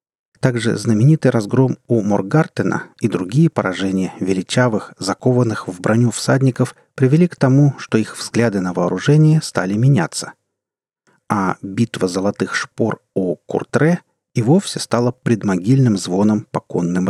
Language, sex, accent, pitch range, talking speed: Russian, male, native, 105-150 Hz, 125 wpm